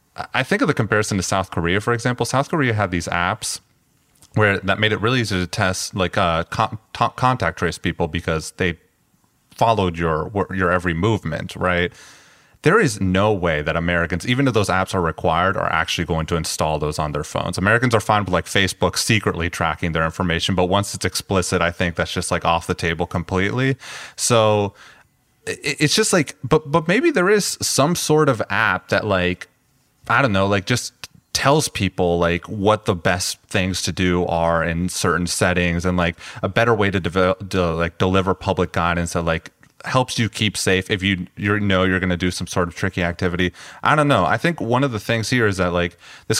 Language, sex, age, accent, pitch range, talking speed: English, male, 30-49, American, 85-110 Hz, 205 wpm